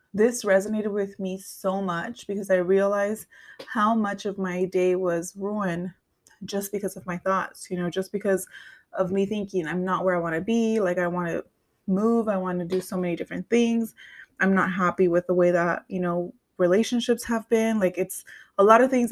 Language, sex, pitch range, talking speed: English, female, 180-200 Hz, 205 wpm